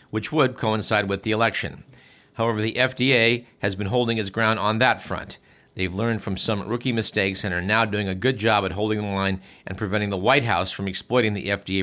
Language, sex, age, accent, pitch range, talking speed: English, male, 50-69, American, 95-120 Hz, 220 wpm